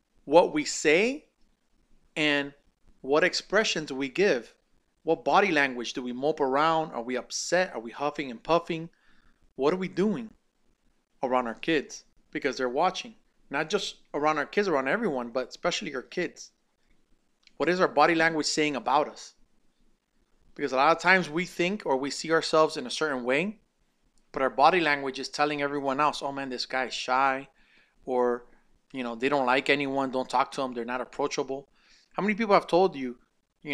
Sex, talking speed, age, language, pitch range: male, 180 wpm, 30-49, English, 135-185 Hz